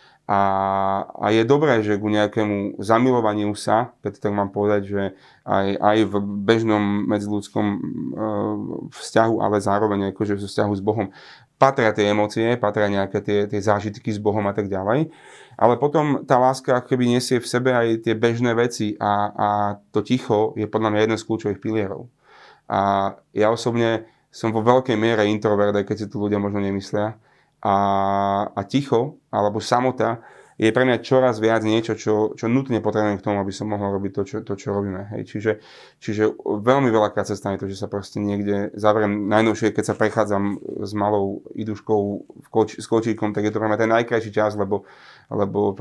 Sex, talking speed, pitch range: male, 180 wpm, 100-115 Hz